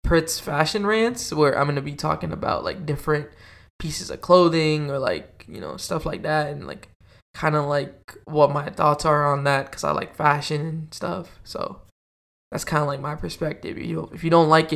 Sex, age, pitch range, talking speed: male, 10-29, 140-170 Hz, 205 wpm